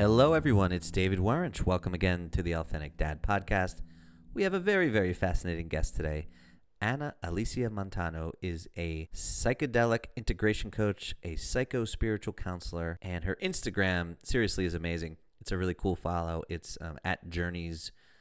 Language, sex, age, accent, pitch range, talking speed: English, male, 30-49, American, 85-110 Hz, 150 wpm